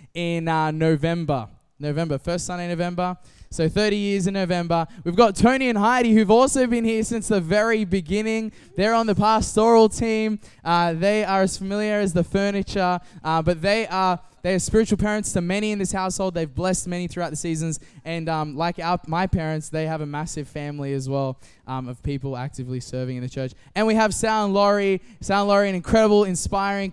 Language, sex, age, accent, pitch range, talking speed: English, male, 10-29, Australian, 155-200 Hz, 200 wpm